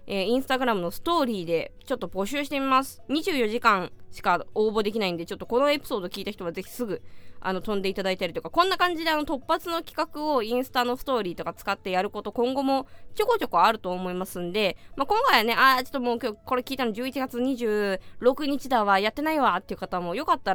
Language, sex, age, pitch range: Japanese, female, 20-39, 195-280 Hz